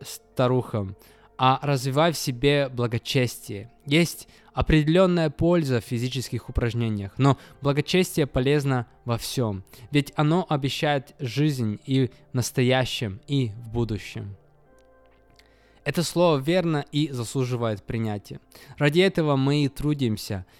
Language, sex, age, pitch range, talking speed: Russian, male, 20-39, 115-145 Hz, 110 wpm